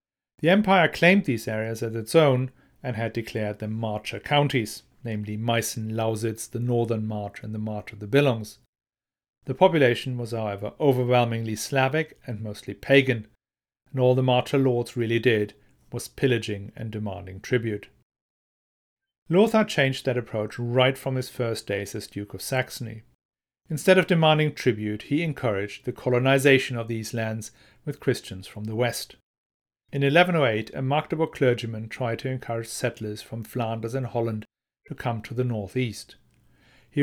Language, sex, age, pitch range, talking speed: English, male, 40-59, 110-135 Hz, 155 wpm